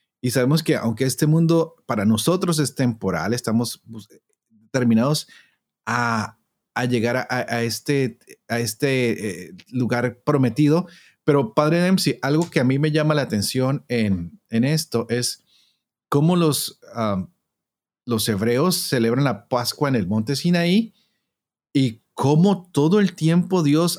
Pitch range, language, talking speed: 120-155 Hz, Spanish, 145 wpm